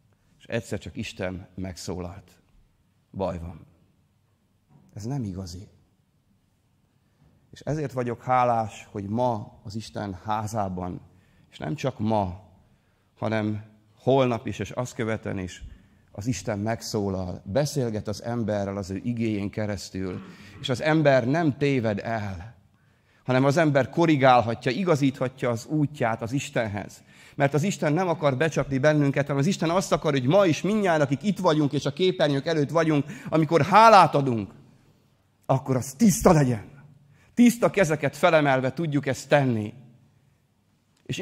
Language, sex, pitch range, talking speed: Hungarian, male, 105-150 Hz, 135 wpm